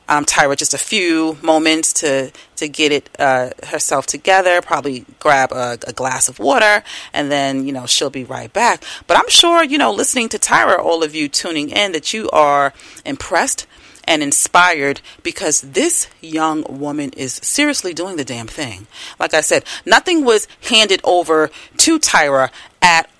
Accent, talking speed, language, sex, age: American, 175 wpm, English, female, 40-59